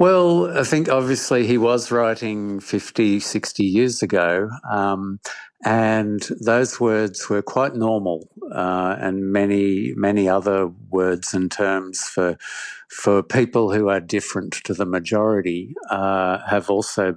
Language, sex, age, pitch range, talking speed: English, male, 50-69, 95-110 Hz, 135 wpm